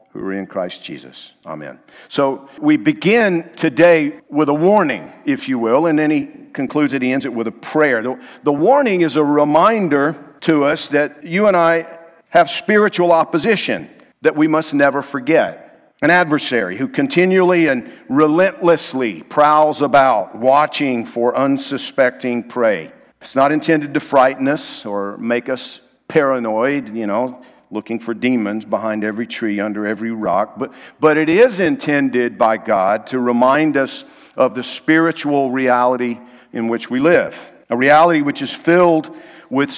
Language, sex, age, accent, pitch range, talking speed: English, male, 50-69, American, 125-160 Hz, 155 wpm